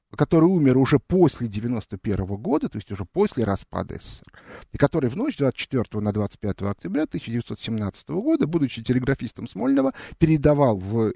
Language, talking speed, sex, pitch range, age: Russian, 140 wpm, male, 115-170 Hz, 50-69